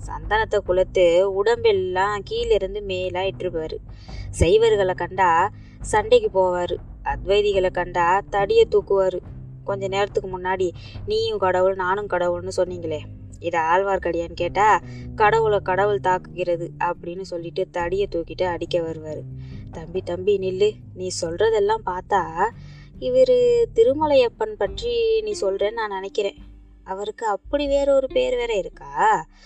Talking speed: 105 wpm